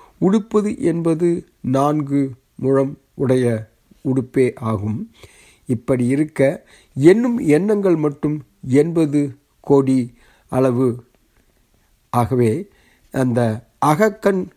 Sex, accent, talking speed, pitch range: male, native, 75 wpm, 125-155 Hz